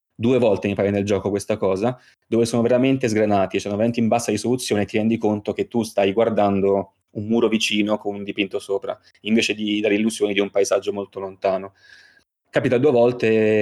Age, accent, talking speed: 20-39, native, 200 wpm